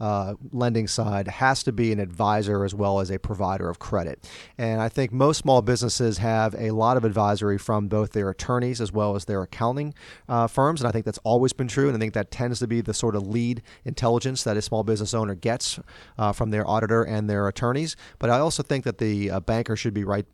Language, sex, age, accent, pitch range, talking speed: English, male, 30-49, American, 105-120 Hz, 235 wpm